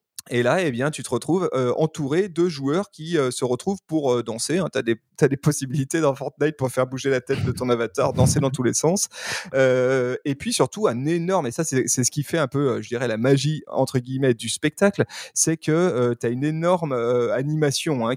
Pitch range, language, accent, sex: 120-155 Hz, French, French, male